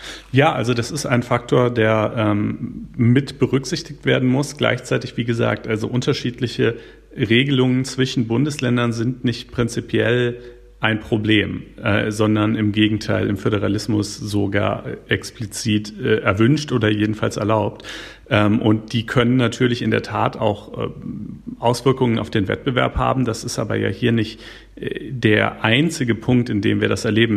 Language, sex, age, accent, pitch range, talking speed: German, male, 40-59, German, 105-120 Hz, 145 wpm